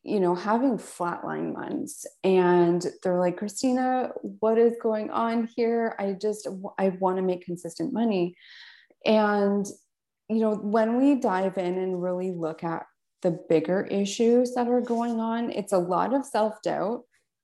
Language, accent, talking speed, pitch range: English, American, 155 wpm, 180-225 Hz